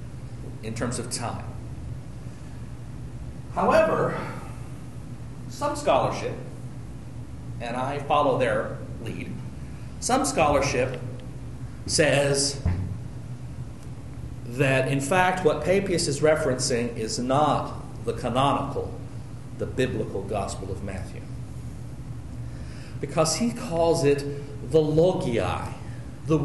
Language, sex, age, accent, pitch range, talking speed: English, male, 40-59, American, 120-150 Hz, 85 wpm